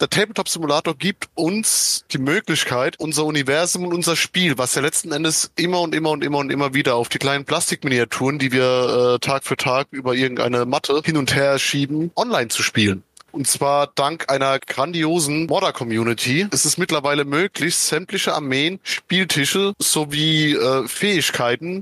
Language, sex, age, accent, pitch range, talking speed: German, male, 30-49, German, 130-160 Hz, 160 wpm